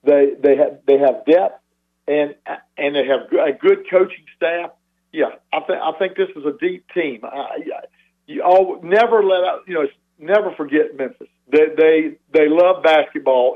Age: 50-69